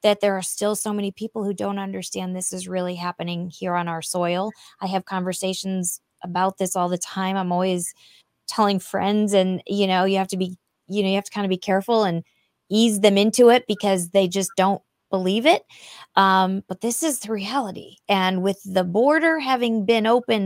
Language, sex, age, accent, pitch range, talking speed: English, female, 20-39, American, 185-225 Hz, 205 wpm